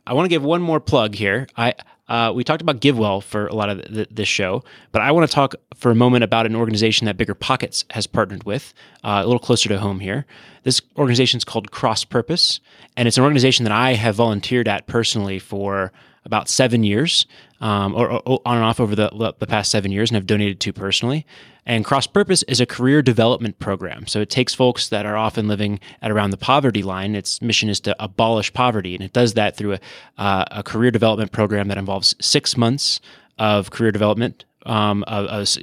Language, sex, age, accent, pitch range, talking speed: English, male, 20-39, American, 100-125 Hz, 220 wpm